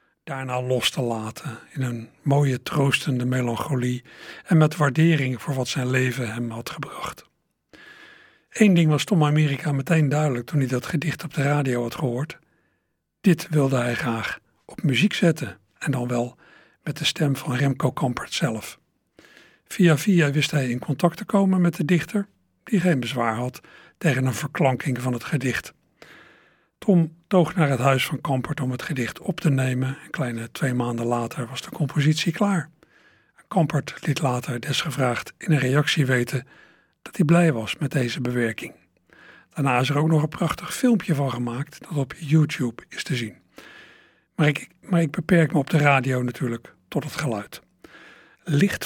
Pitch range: 125-160 Hz